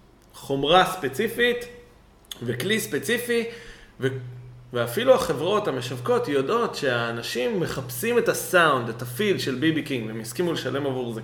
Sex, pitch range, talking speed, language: male, 125-170 Hz, 125 wpm, Hebrew